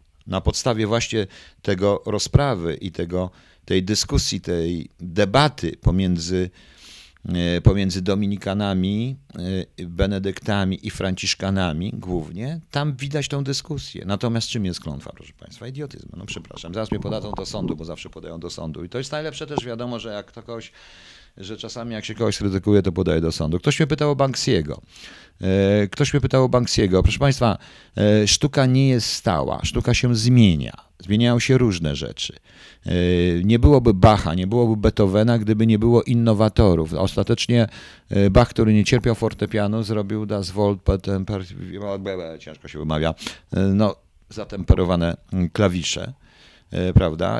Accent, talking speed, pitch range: native, 140 wpm, 90-115 Hz